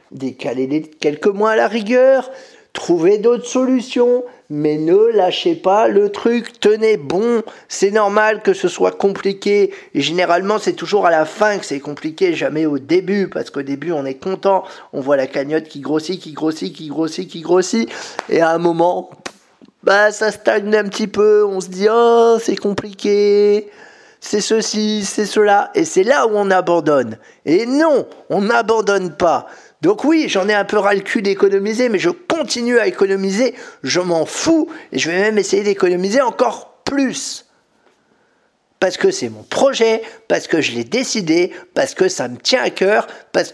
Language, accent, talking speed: French, French, 175 wpm